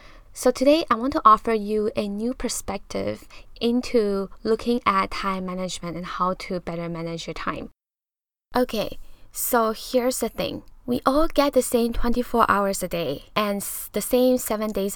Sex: female